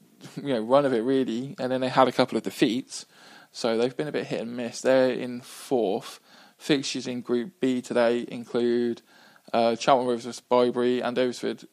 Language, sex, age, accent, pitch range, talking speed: English, male, 20-39, British, 115-140 Hz, 190 wpm